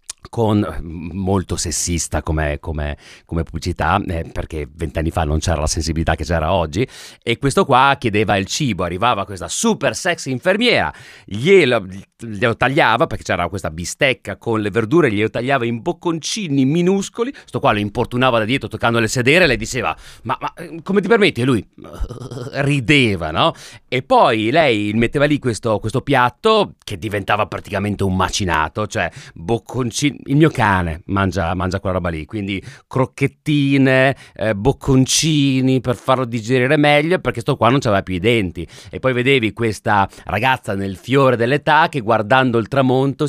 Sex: male